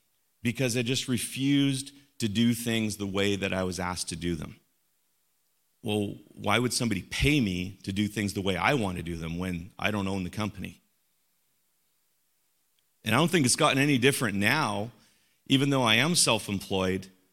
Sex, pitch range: male, 100-130 Hz